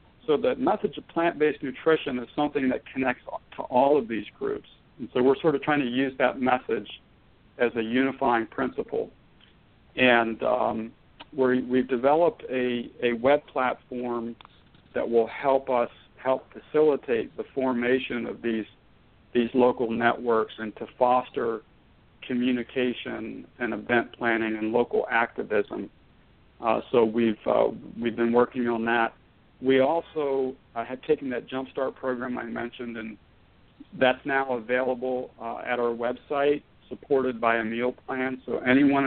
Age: 60-79